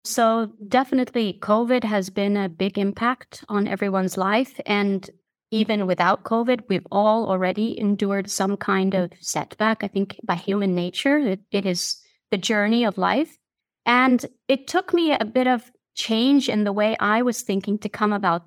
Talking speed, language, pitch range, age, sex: 170 wpm, English, 200-240 Hz, 30-49, female